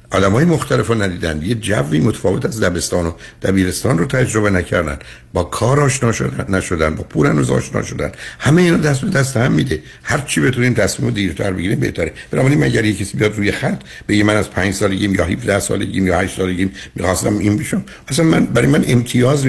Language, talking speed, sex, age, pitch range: Persian, 205 wpm, male, 60-79, 85-120 Hz